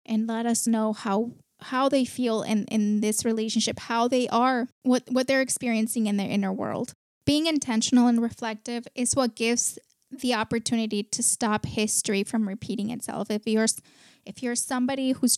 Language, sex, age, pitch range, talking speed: English, female, 10-29, 215-245 Hz, 170 wpm